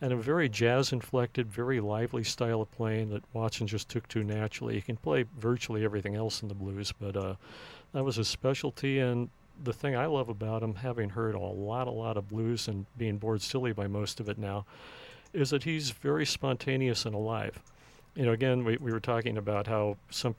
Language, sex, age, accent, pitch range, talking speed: English, male, 50-69, American, 110-125 Hz, 210 wpm